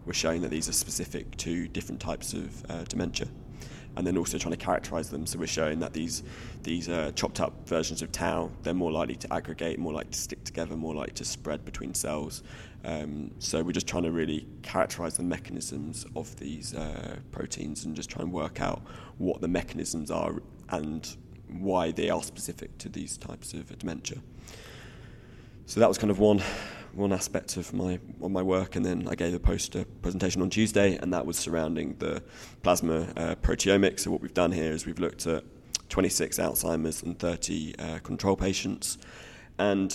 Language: English